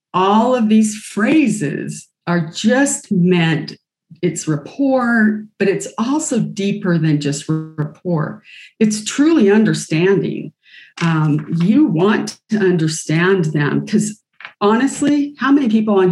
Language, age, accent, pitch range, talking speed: English, 40-59, American, 165-215 Hz, 115 wpm